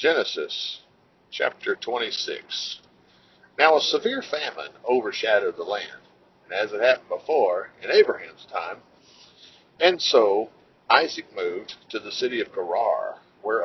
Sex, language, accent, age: male, English, American, 50-69